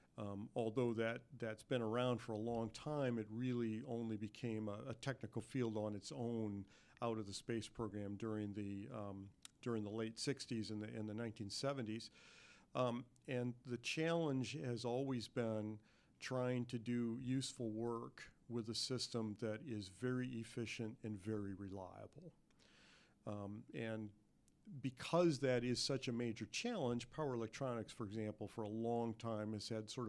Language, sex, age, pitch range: English, male, 50-69, 110-125 Hz